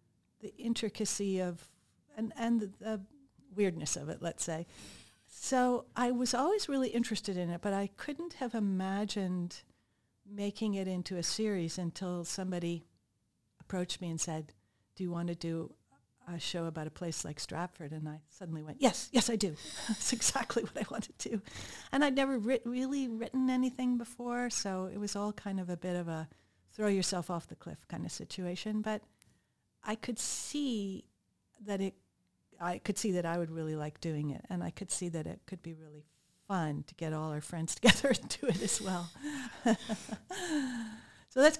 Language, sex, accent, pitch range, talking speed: English, female, American, 165-225 Hz, 185 wpm